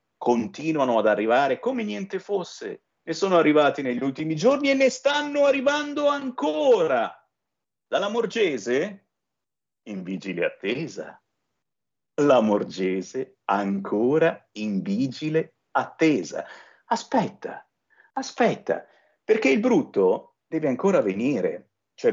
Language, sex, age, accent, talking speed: Italian, male, 50-69, native, 100 wpm